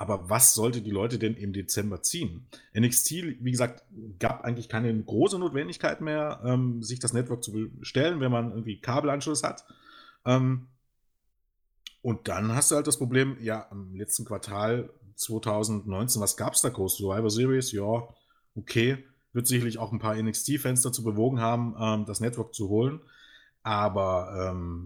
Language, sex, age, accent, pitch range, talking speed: German, male, 30-49, German, 110-135 Hz, 160 wpm